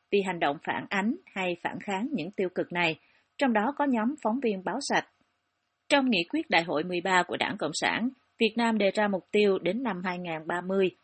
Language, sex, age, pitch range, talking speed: Vietnamese, female, 30-49, 185-240 Hz, 210 wpm